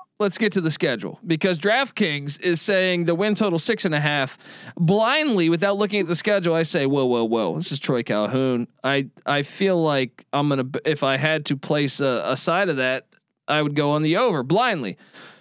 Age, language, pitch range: 20-39, English, 140-180 Hz